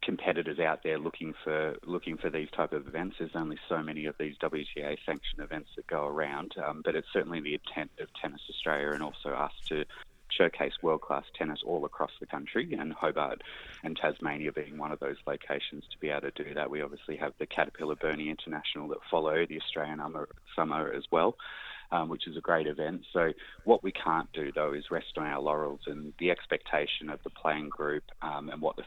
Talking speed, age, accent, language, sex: 210 wpm, 20-39, Australian, English, male